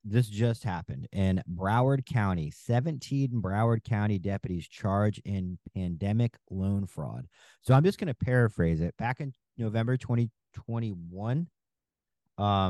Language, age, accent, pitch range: English, 40-59, American, 95-120 Hz